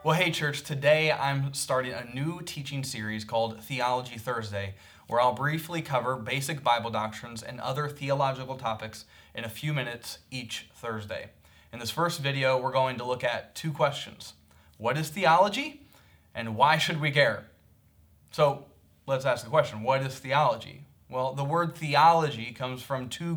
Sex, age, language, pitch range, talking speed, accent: male, 20-39, English, 115-145 Hz, 165 wpm, American